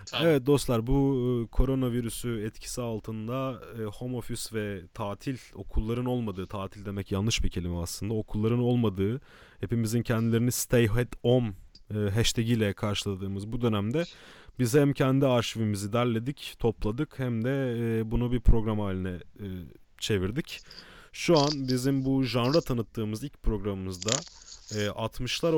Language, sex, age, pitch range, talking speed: Turkish, male, 30-49, 105-130 Hz, 120 wpm